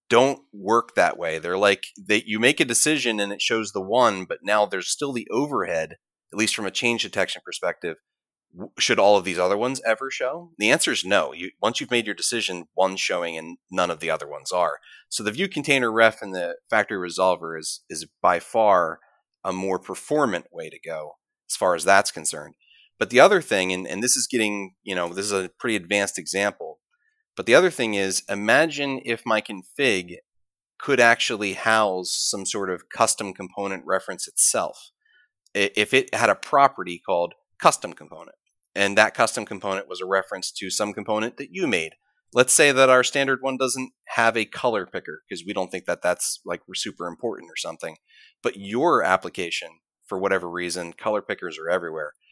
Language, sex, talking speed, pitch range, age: English, male, 190 wpm, 95-125 Hz, 30-49